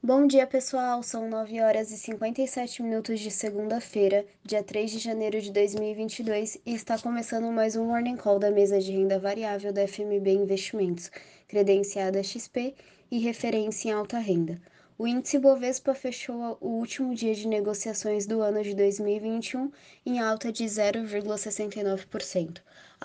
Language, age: Portuguese, 20-39